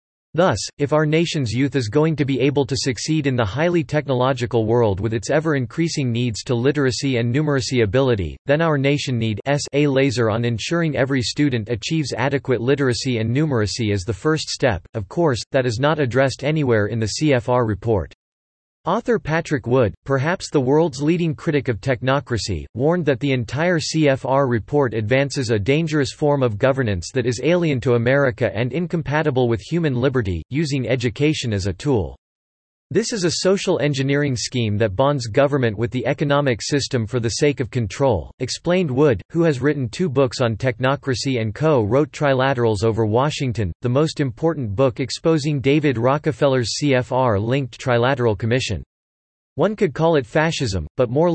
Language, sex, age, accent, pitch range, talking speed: English, male, 40-59, American, 115-150 Hz, 165 wpm